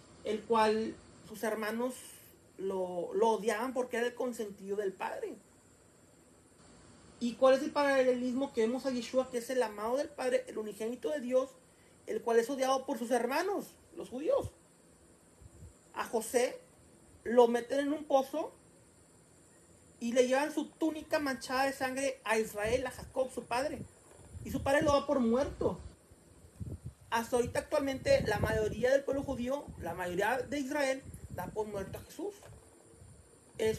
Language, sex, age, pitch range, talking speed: Spanish, male, 40-59, 220-275 Hz, 155 wpm